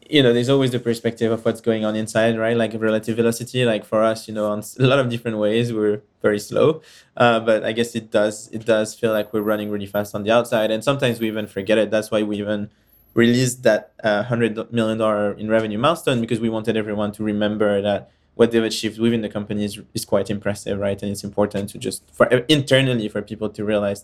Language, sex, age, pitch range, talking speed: English, male, 20-39, 105-115 Hz, 230 wpm